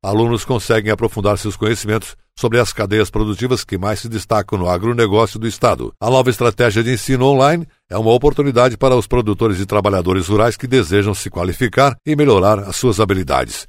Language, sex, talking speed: Portuguese, male, 180 wpm